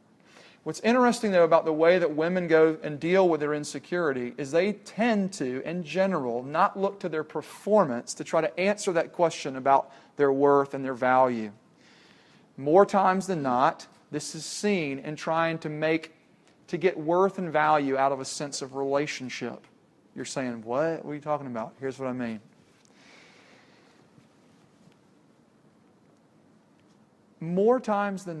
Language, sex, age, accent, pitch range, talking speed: English, male, 40-59, American, 135-180 Hz, 155 wpm